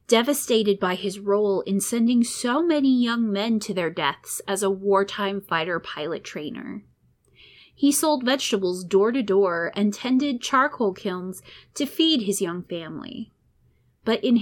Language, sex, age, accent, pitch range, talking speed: English, female, 20-39, American, 195-260 Hz, 140 wpm